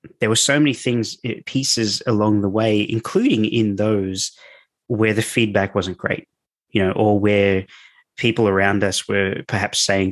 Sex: male